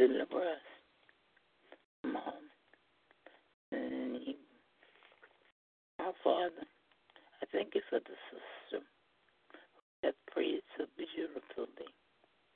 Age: 60-79